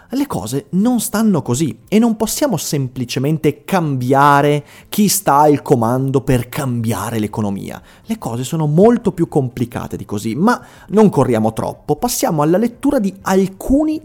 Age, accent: 30-49, native